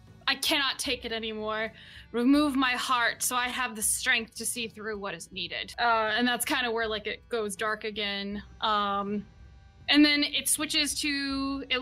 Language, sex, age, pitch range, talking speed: English, female, 10-29, 225-270 Hz, 190 wpm